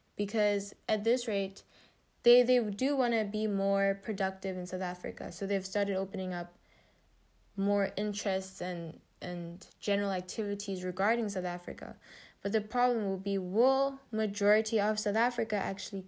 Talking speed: 150 wpm